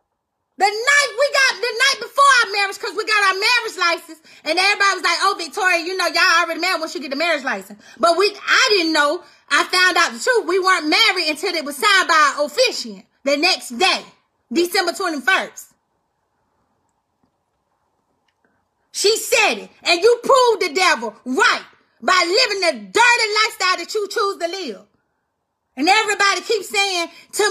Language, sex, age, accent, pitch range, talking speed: English, female, 30-49, American, 335-445 Hz, 175 wpm